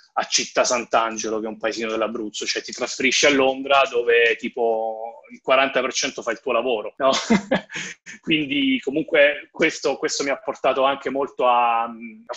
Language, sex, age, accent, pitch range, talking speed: Italian, male, 30-49, native, 115-155 Hz, 160 wpm